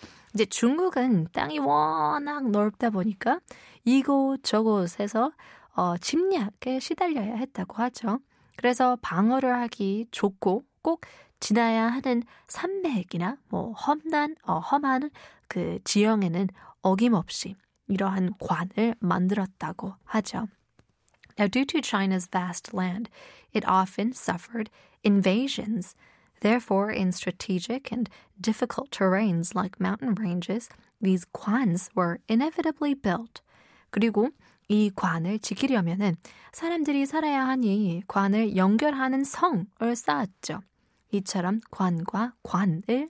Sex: female